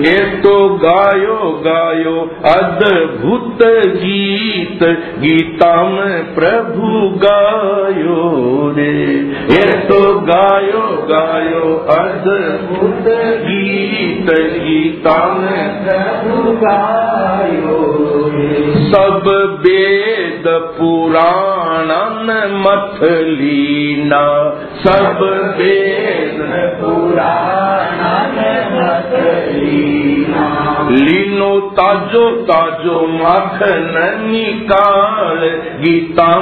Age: 50-69